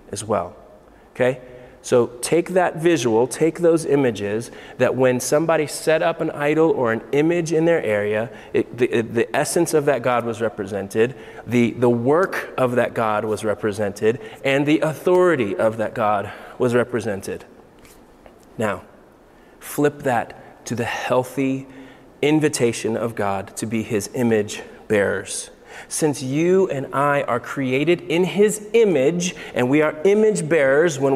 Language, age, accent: English, 30-49, American